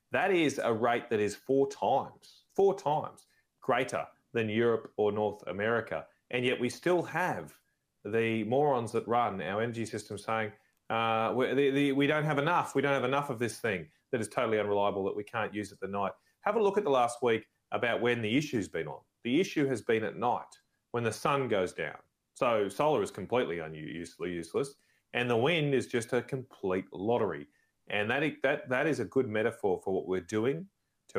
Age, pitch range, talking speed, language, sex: 30-49, 105-140 Hz, 195 wpm, English, male